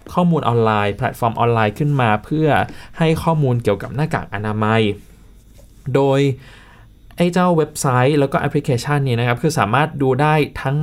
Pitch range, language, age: 110-150 Hz, Thai, 20-39